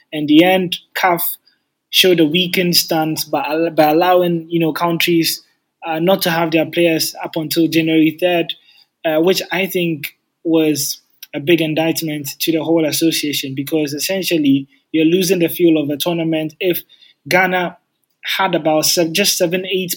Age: 20-39